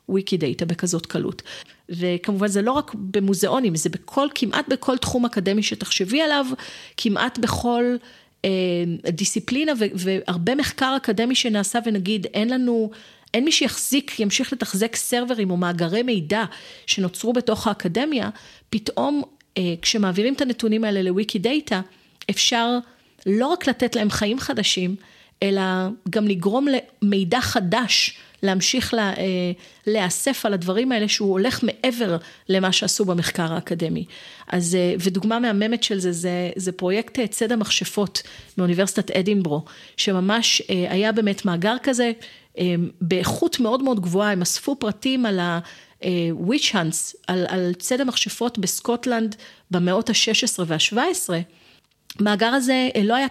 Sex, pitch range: female, 185-240 Hz